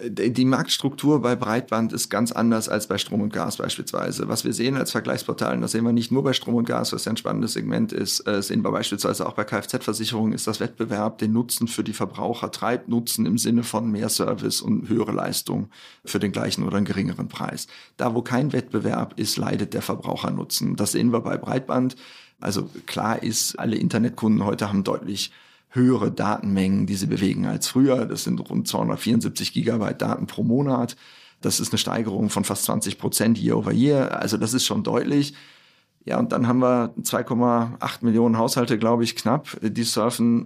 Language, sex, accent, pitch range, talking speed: German, male, German, 110-125 Hz, 195 wpm